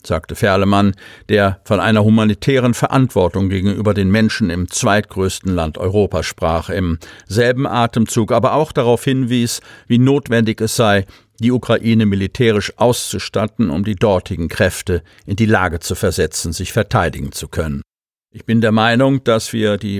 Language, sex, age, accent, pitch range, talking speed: German, male, 50-69, German, 100-120 Hz, 150 wpm